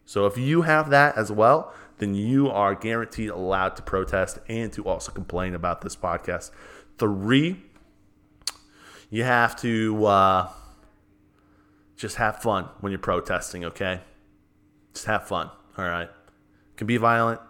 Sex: male